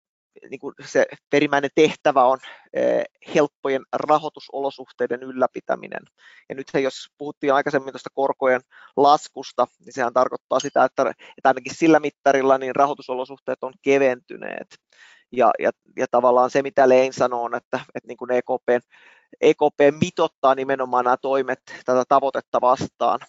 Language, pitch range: Finnish, 125-140 Hz